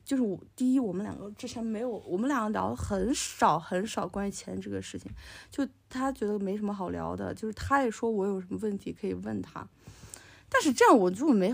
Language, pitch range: Chinese, 175-250 Hz